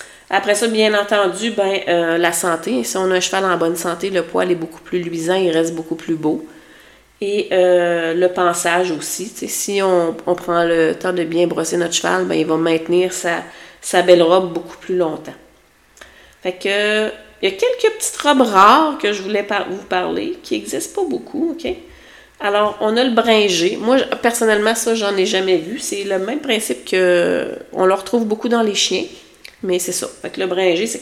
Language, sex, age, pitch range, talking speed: French, female, 30-49, 180-225 Hz, 200 wpm